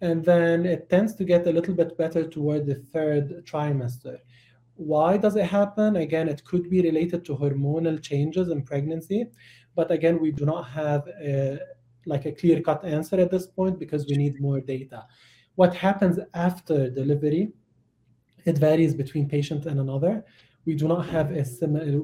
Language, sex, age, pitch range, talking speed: English, male, 30-49, 135-170 Hz, 170 wpm